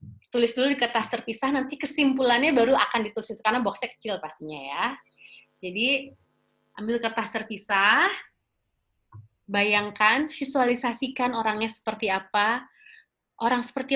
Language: Indonesian